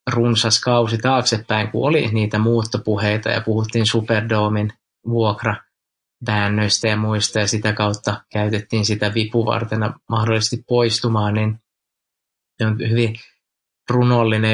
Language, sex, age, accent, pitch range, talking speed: Finnish, male, 20-39, native, 105-115 Hz, 105 wpm